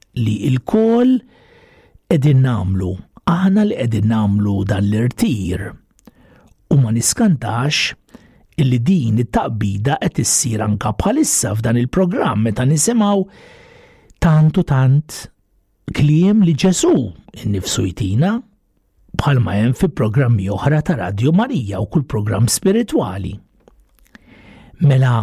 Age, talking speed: 60-79, 75 wpm